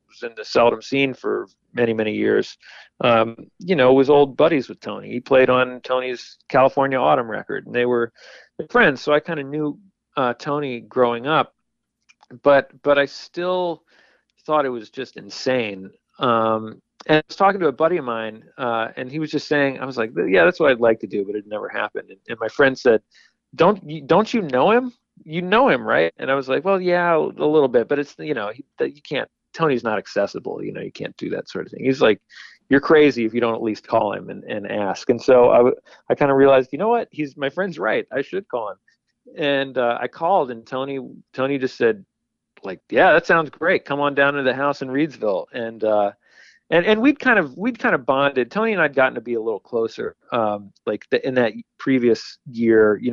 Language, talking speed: English, 230 wpm